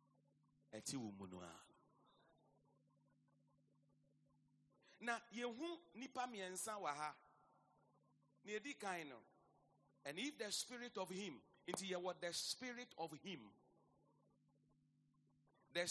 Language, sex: English, male